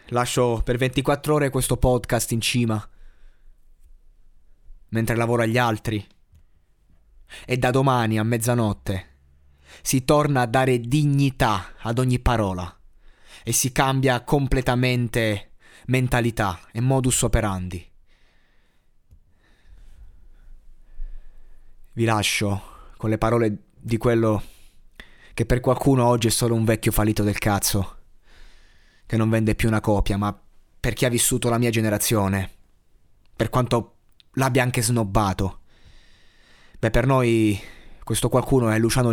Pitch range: 90-120 Hz